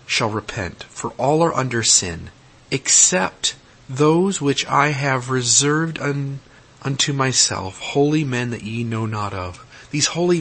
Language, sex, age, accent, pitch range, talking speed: English, male, 40-59, American, 110-140 Hz, 140 wpm